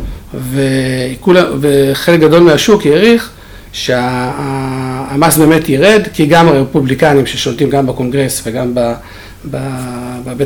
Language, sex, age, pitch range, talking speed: Hebrew, male, 50-69, 125-160 Hz, 105 wpm